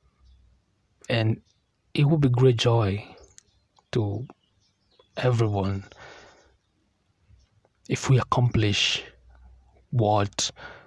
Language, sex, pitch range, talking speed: English, male, 100-125 Hz, 65 wpm